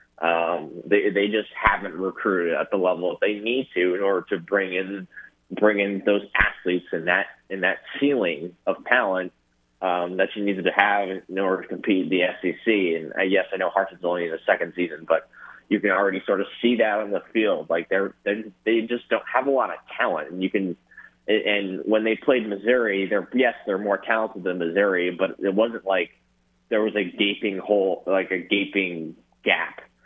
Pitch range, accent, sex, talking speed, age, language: 85-105 Hz, American, male, 205 wpm, 20-39, English